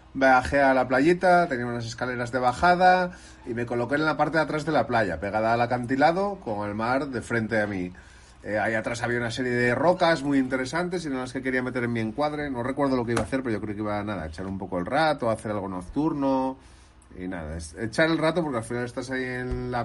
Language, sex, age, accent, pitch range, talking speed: Spanish, male, 30-49, Spanish, 105-140 Hz, 255 wpm